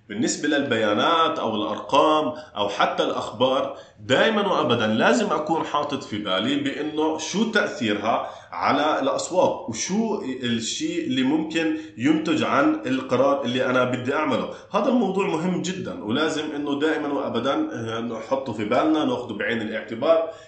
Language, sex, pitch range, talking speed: Arabic, male, 105-160 Hz, 130 wpm